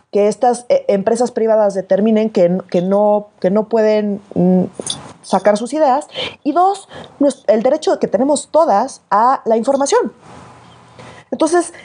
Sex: female